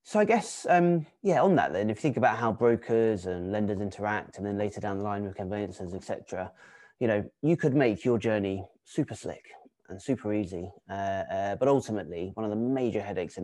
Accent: British